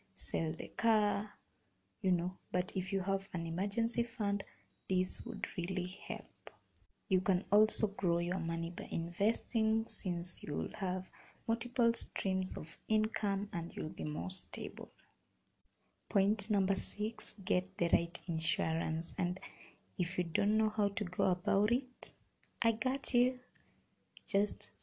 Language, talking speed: English, 140 wpm